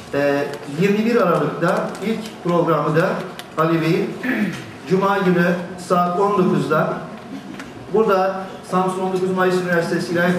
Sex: male